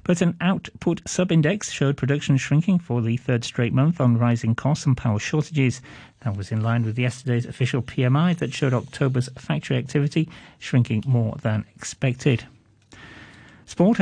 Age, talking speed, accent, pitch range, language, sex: 40-59, 155 wpm, British, 120-155 Hz, English, male